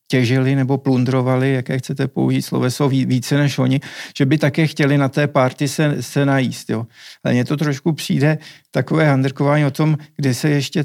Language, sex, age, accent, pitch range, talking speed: Czech, male, 50-69, native, 130-160 Hz, 170 wpm